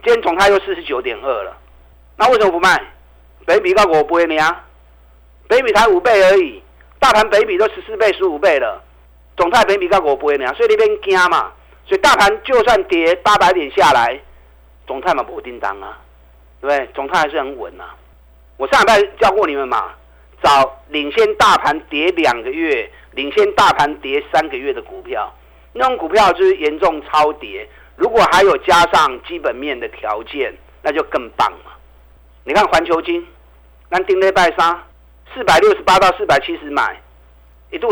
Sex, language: male, Chinese